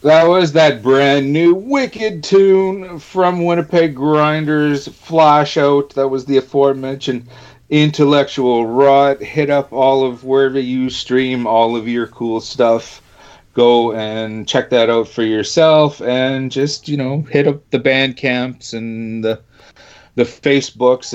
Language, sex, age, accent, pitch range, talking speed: English, male, 40-59, American, 120-165 Hz, 140 wpm